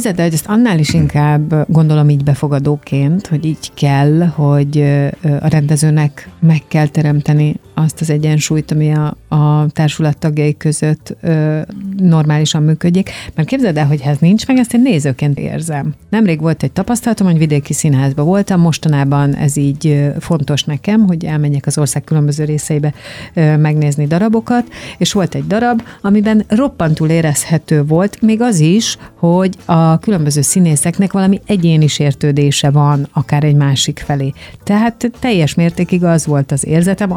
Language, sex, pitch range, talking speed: Hungarian, female, 150-180 Hz, 150 wpm